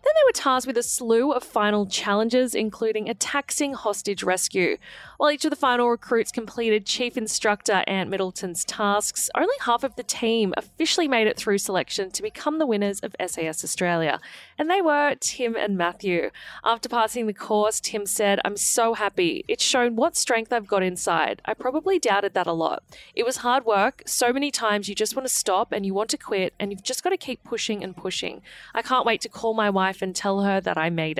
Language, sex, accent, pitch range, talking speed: English, female, Australian, 200-255 Hz, 215 wpm